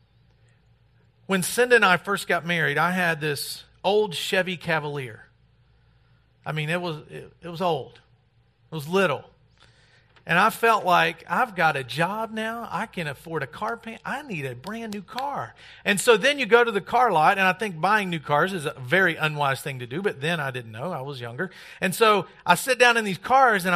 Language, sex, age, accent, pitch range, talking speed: English, male, 50-69, American, 145-190 Hz, 210 wpm